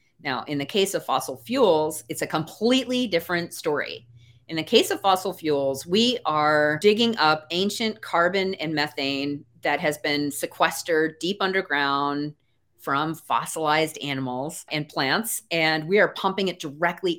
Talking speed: 150 wpm